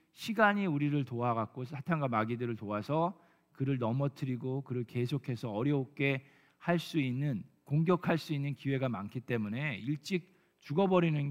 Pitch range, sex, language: 120-165 Hz, male, Korean